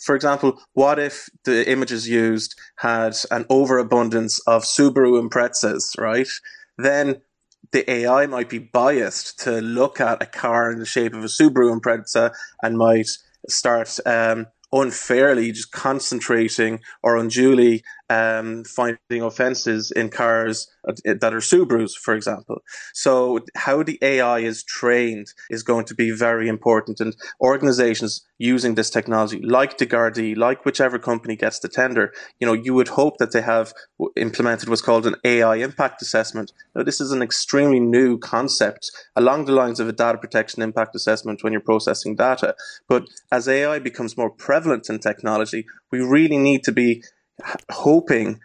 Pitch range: 115-130 Hz